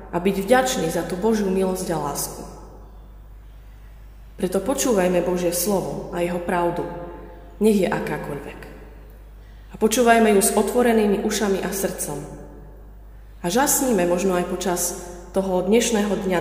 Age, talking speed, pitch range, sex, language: 30-49, 130 wpm, 165-205 Hz, female, Slovak